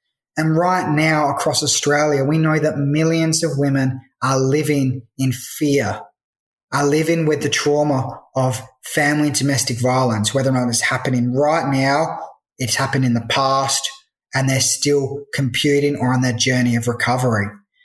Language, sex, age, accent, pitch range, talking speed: English, male, 20-39, Australian, 135-160 Hz, 160 wpm